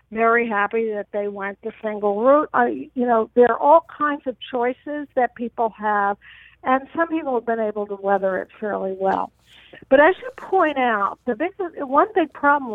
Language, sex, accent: English, female, American